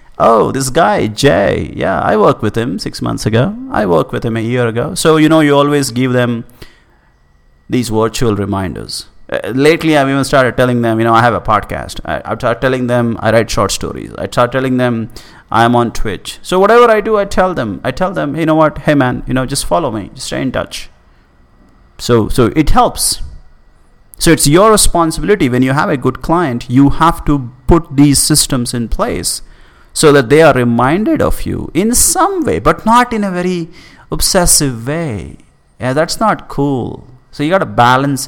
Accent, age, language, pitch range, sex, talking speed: Indian, 30-49, English, 115-155 Hz, male, 205 wpm